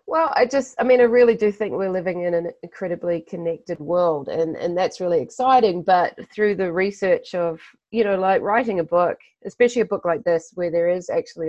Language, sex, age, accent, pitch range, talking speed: English, female, 30-49, Australian, 165-205 Hz, 210 wpm